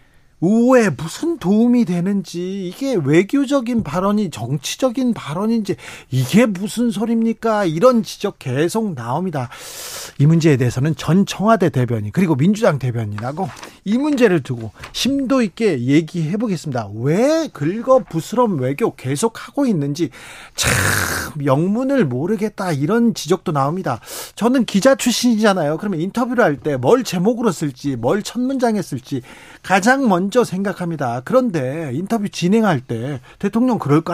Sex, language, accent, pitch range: male, Korean, native, 145-225 Hz